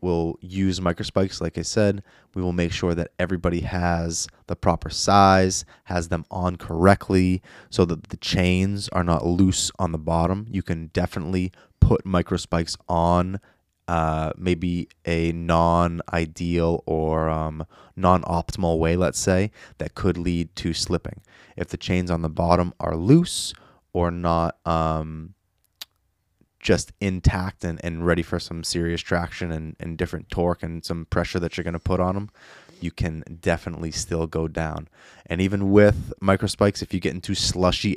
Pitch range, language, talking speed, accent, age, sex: 80-95 Hz, English, 160 wpm, American, 20-39, male